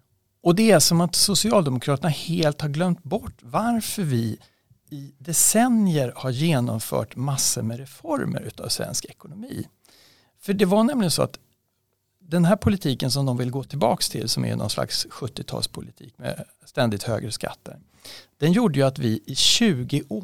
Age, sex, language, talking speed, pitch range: 60-79, male, Swedish, 155 wpm, 115-165 Hz